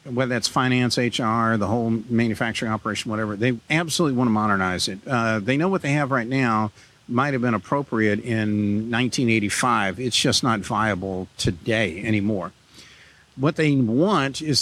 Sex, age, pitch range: male, 50-69, 110-140 Hz